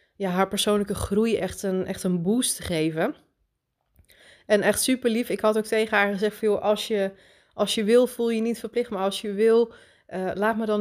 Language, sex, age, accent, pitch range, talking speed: Dutch, female, 30-49, Dutch, 185-220 Hz, 215 wpm